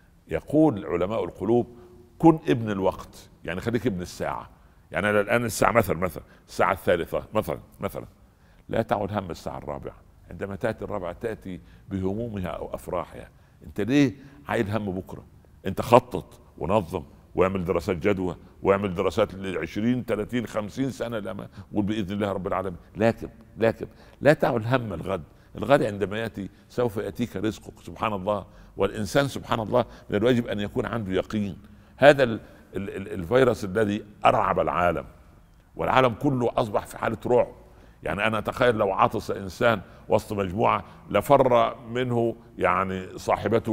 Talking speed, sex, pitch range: 140 wpm, male, 95-115 Hz